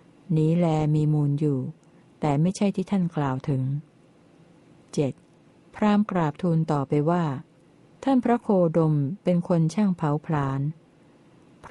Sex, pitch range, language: female, 150-180 Hz, Thai